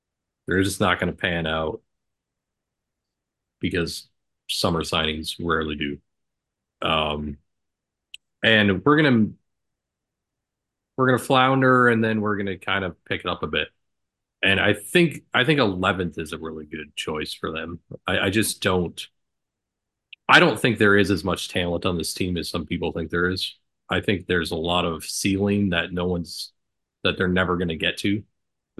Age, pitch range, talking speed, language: 30-49, 85-100 Hz, 170 wpm, English